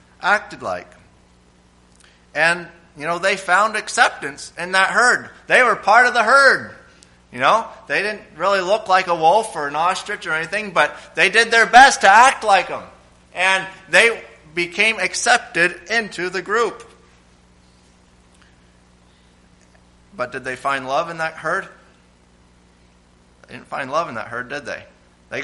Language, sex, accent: English, male, American